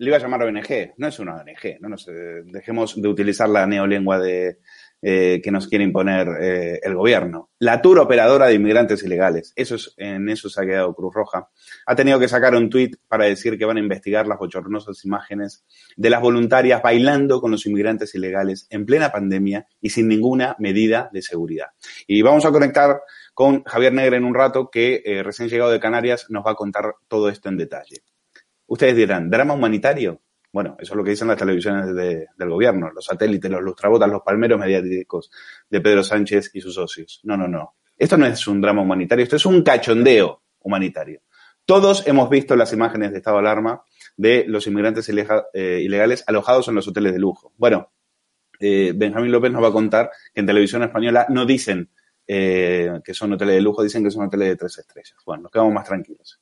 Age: 30-49